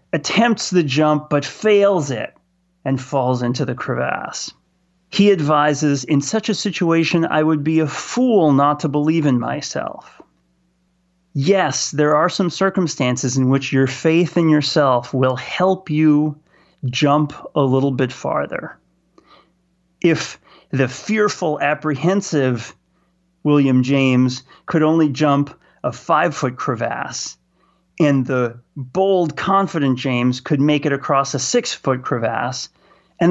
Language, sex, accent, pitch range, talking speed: English, male, American, 135-180 Hz, 130 wpm